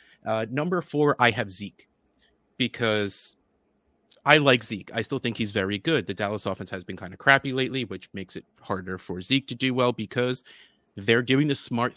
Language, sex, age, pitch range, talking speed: English, male, 30-49, 100-135 Hz, 195 wpm